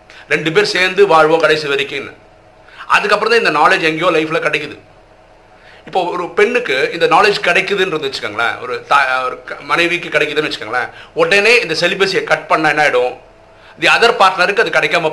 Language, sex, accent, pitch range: Tamil, male, native, 150-235 Hz